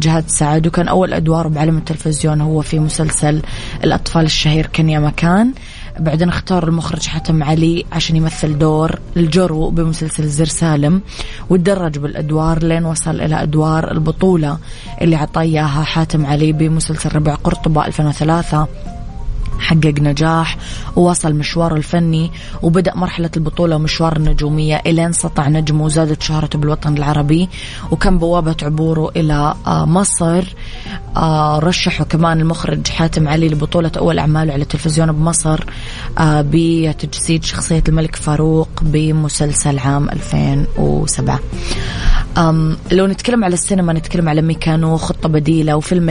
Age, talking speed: 20-39, 120 wpm